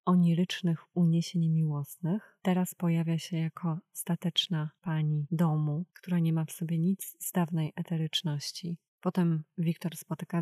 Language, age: Polish, 20-39